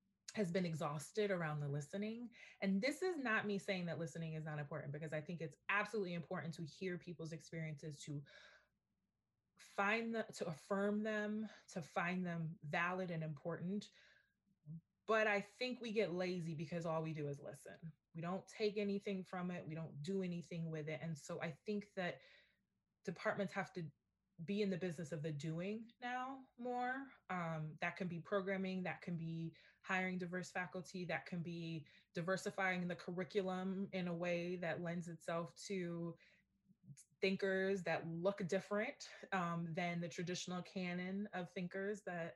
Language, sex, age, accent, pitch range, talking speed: English, female, 20-39, American, 165-195 Hz, 165 wpm